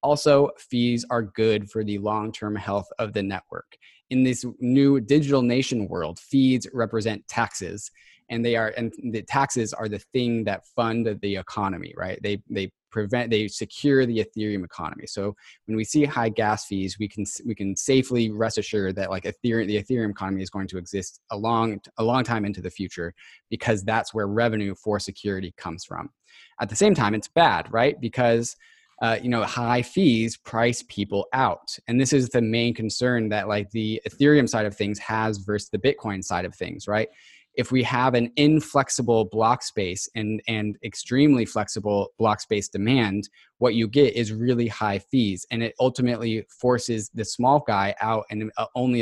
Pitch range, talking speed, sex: 105-120 Hz, 185 wpm, male